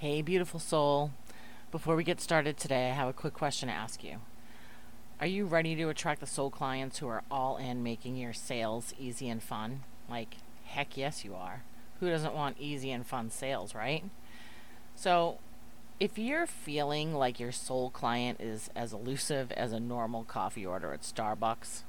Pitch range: 120-160 Hz